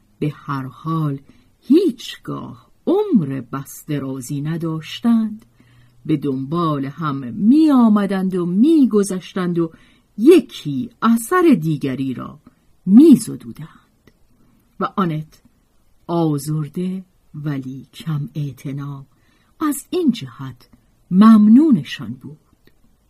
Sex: female